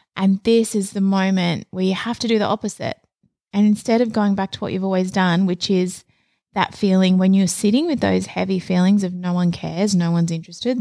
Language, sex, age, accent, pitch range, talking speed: English, female, 20-39, Australian, 180-220 Hz, 220 wpm